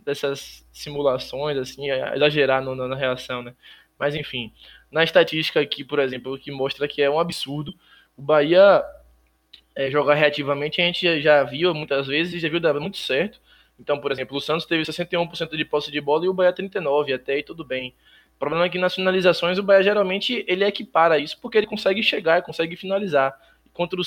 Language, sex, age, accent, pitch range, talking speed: Portuguese, male, 20-39, Brazilian, 135-180 Hz, 190 wpm